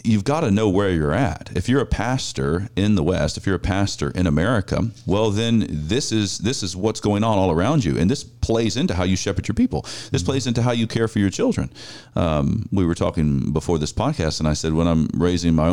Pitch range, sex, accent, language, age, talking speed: 85-115 Hz, male, American, English, 40-59, 245 wpm